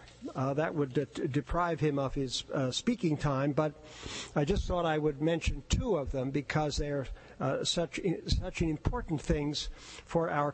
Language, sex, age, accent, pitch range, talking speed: English, male, 50-69, American, 145-175 Hz, 180 wpm